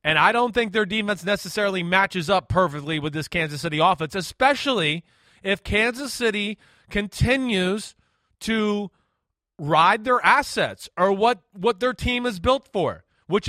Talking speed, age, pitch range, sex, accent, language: 145 wpm, 30-49, 170-220 Hz, male, American, English